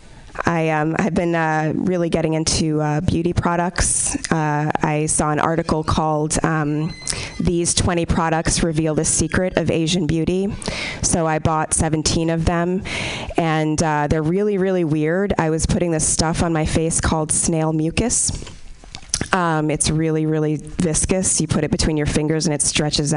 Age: 20-39